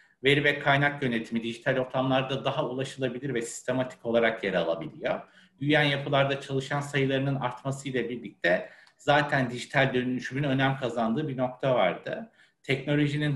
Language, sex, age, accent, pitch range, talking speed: Turkish, male, 60-79, native, 125-140 Hz, 125 wpm